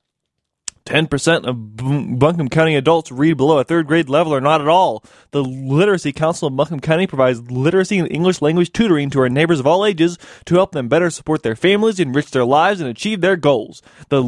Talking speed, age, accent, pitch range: 195 wpm, 20-39, American, 140-195 Hz